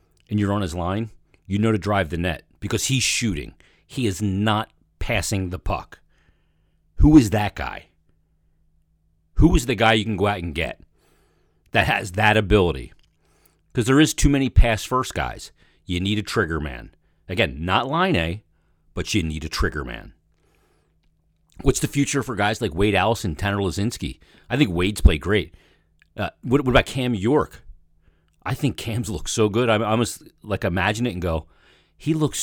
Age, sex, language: 40-59, male, English